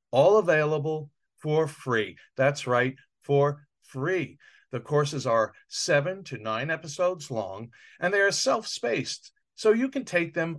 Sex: male